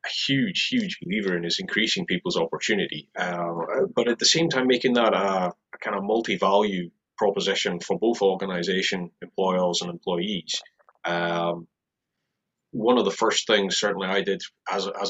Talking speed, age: 155 wpm, 30-49